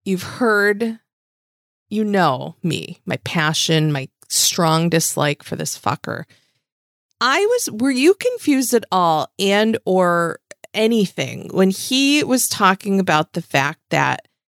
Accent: American